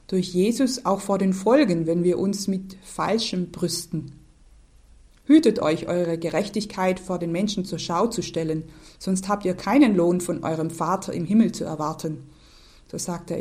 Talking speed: 170 wpm